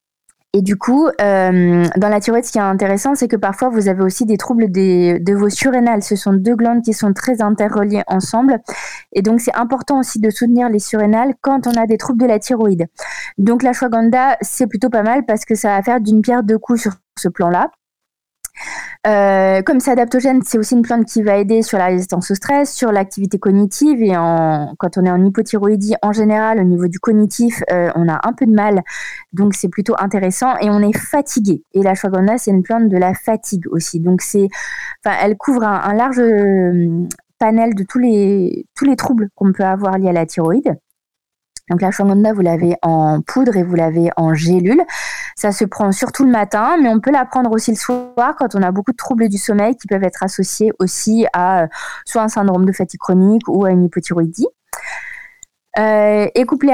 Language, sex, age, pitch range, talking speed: French, female, 20-39, 190-235 Hz, 210 wpm